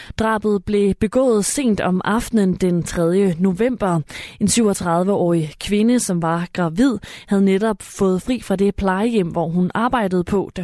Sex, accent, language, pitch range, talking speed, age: female, native, Danish, 175-220 Hz, 150 wpm, 20-39